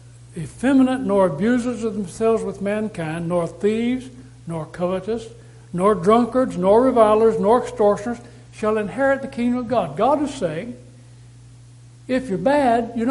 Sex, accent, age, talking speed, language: male, American, 60-79, 135 wpm, English